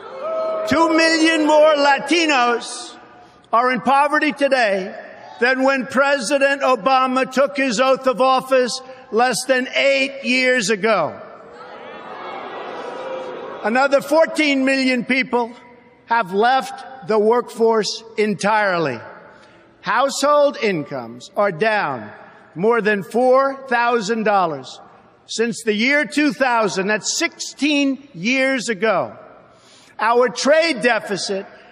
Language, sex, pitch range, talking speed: English, male, 230-290 Hz, 95 wpm